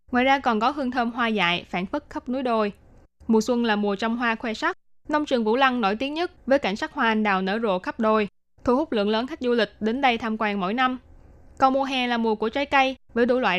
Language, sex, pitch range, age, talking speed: Vietnamese, female, 210-260 Hz, 20-39, 275 wpm